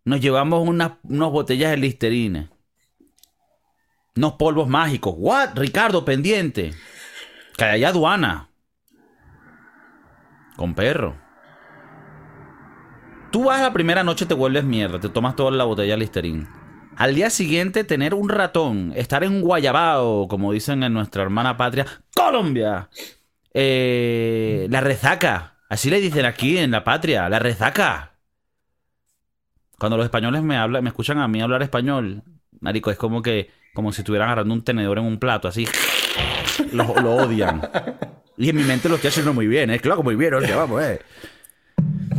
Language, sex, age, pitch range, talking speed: Spanish, male, 30-49, 110-155 Hz, 150 wpm